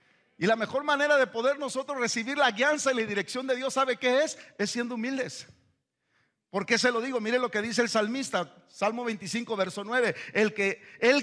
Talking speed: 205 wpm